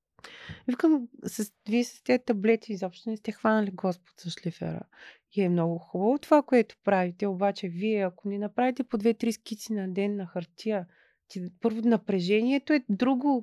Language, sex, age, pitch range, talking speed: Bulgarian, female, 30-49, 200-270 Hz, 150 wpm